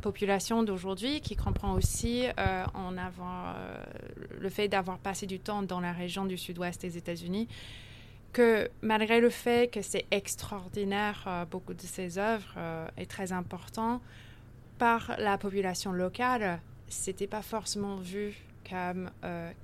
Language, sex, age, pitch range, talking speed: French, female, 20-39, 170-195 Hz, 150 wpm